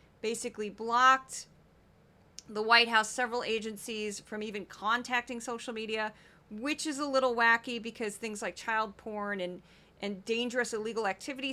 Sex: female